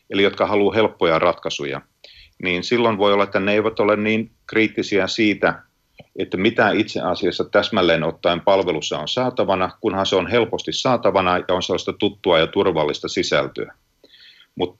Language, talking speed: Finnish, 155 wpm